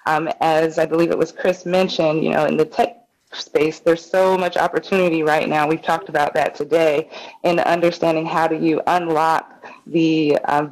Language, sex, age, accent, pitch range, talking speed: English, female, 20-39, American, 160-185 Hz, 185 wpm